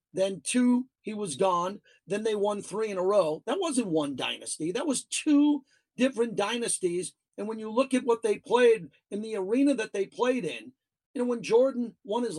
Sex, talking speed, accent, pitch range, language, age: male, 205 wpm, American, 195-250 Hz, English, 40-59